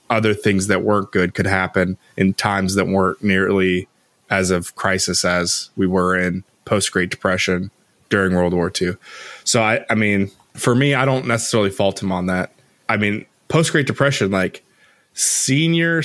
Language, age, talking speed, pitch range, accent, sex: English, 20-39, 170 wpm, 95-130 Hz, American, male